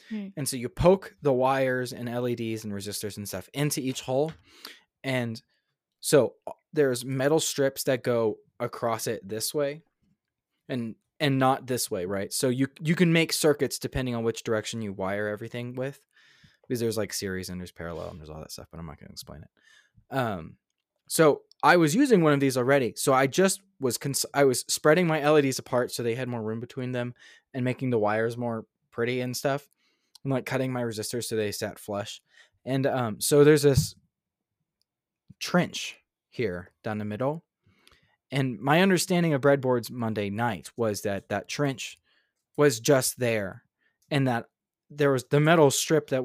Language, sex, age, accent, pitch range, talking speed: English, male, 20-39, American, 115-145 Hz, 185 wpm